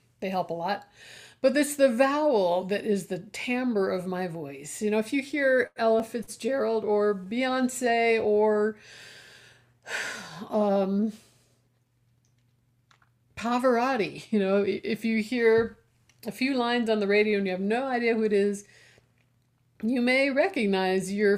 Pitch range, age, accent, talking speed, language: 190-265 Hz, 50-69, American, 140 wpm, English